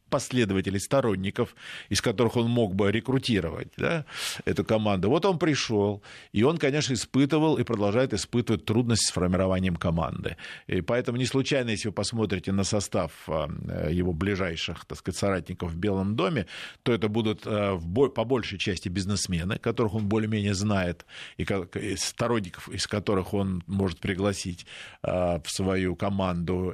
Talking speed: 130 wpm